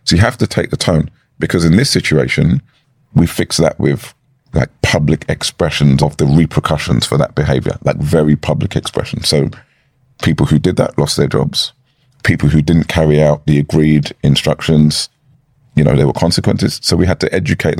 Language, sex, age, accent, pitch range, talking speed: English, male, 30-49, British, 75-115 Hz, 180 wpm